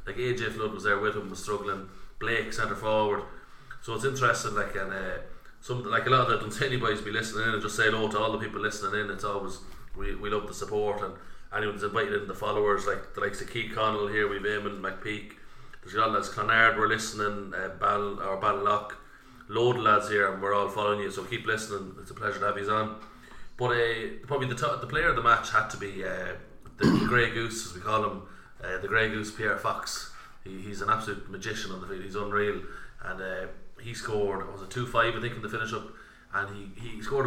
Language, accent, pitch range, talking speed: English, Irish, 100-110 Hz, 240 wpm